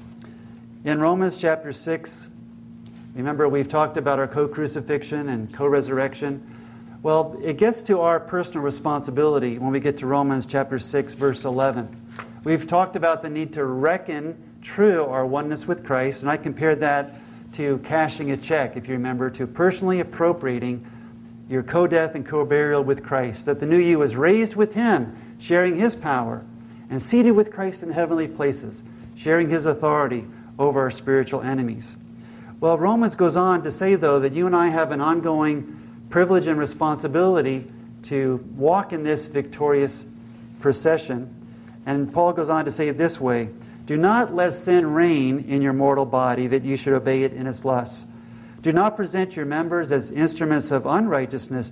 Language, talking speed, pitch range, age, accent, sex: English, 165 wpm, 125-165 Hz, 50-69, American, male